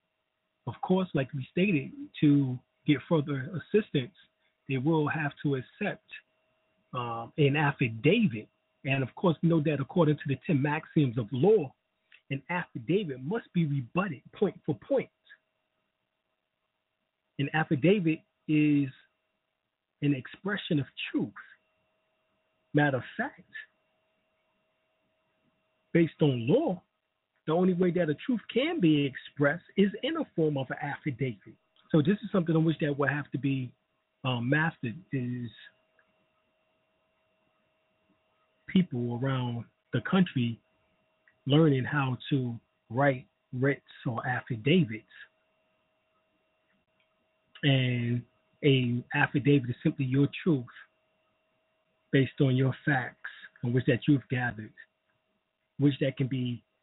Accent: American